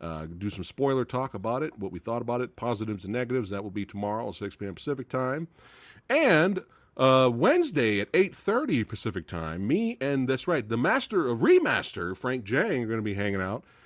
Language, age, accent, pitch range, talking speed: English, 40-59, American, 90-130 Hz, 210 wpm